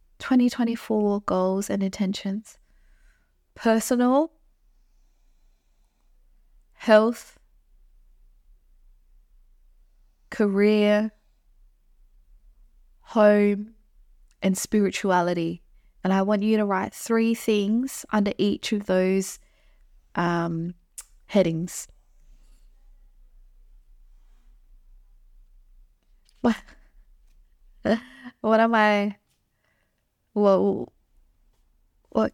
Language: English